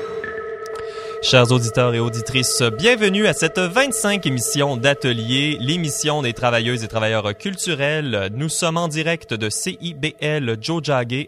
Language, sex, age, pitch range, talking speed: French, male, 20-39, 115-170 Hz, 120 wpm